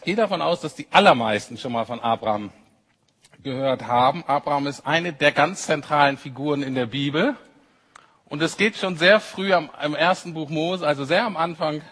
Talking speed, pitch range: 185 wpm, 140-190 Hz